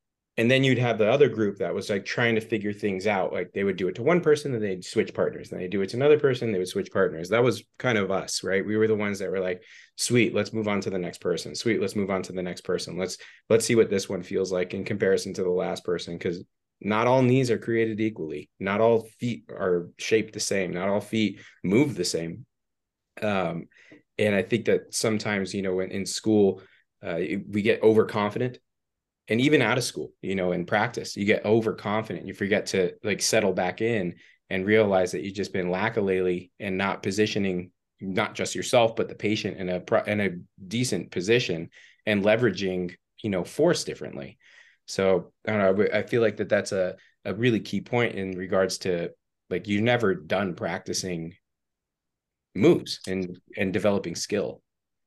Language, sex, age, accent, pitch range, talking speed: English, male, 30-49, American, 95-110 Hz, 210 wpm